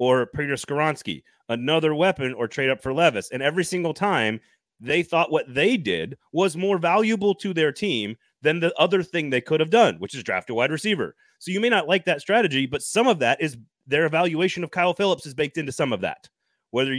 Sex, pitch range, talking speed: male, 120-160 Hz, 220 wpm